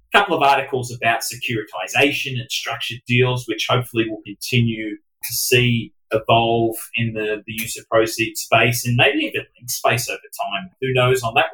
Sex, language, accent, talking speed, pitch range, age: male, English, Australian, 165 wpm, 110-130 Hz, 30-49